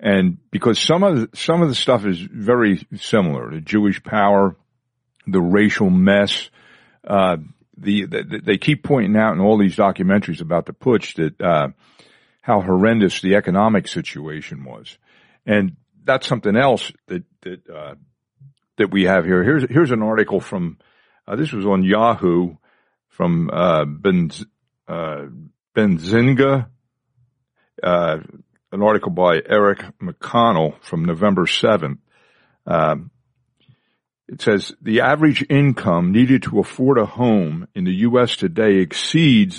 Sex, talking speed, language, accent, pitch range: male, 140 wpm, English, American, 100-135 Hz